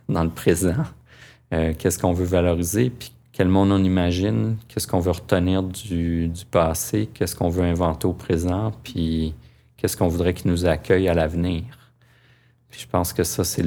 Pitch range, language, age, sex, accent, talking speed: 85-105 Hz, French, 40-59, male, Canadian, 175 wpm